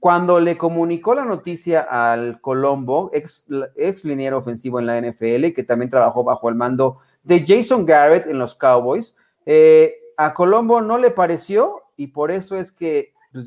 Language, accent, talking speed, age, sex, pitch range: Spanish, Mexican, 170 wpm, 40-59, male, 135-175 Hz